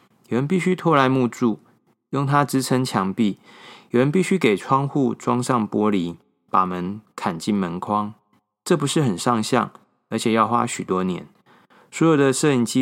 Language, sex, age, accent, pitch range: Chinese, male, 20-39, native, 110-150 Hz